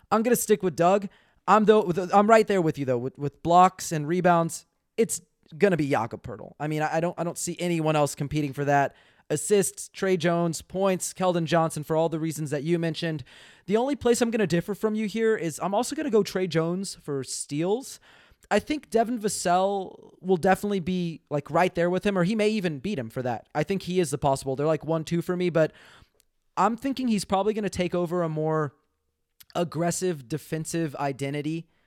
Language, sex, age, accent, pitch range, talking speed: English, male, 30-49, American, 150-190 Hz, 210 wpm